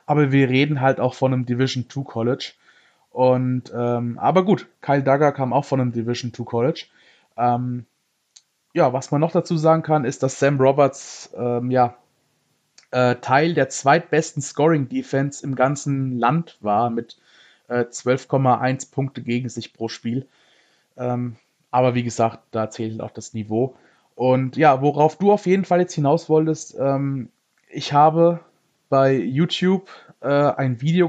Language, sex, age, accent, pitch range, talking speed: German, male, 20-39, German, 125-155 Hz, 150 wpm